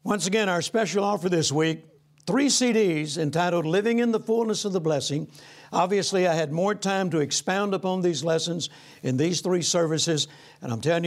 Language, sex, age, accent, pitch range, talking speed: English, male, 60-79, American, 155-195 Hz, 185 wpm